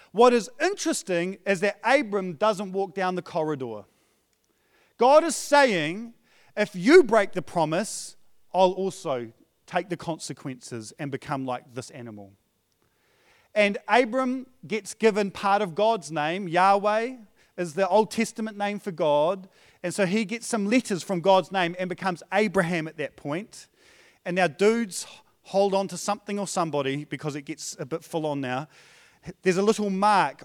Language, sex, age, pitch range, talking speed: English, male, 40-59, 155-220 Hz, 160 wpm